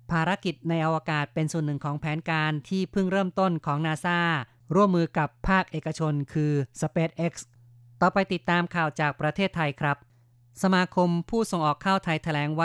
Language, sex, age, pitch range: Thai, female, 30-49, 145-165 Hz